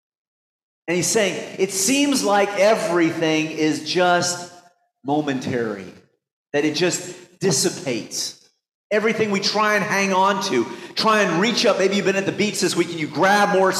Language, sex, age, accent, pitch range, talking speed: English, male, 40-59, American, 155-200 Hz, 160 wpm